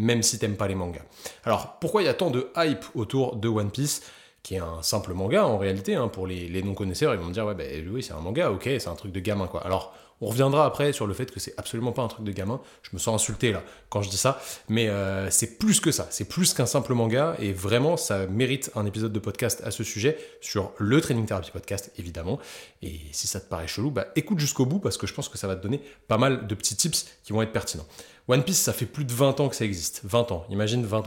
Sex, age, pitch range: male, 30-49, 100-135 Hz